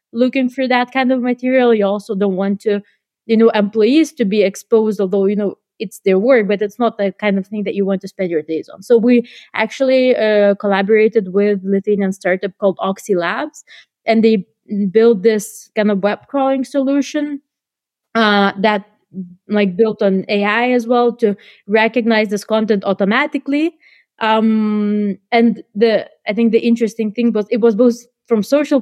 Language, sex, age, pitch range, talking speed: Spanish, female, 20-39, 200-240 Hz, 175 wpm